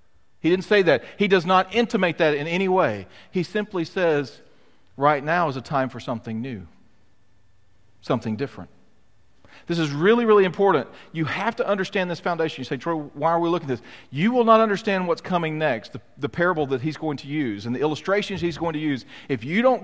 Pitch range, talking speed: 140-200 Hz, 210 wpm